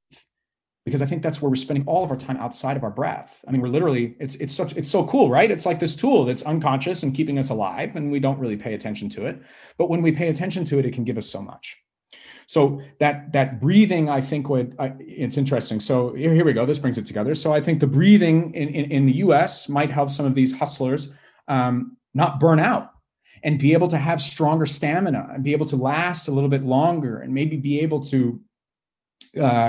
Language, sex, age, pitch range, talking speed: English, male, 30-49, 125-150 Hz, 230 wpm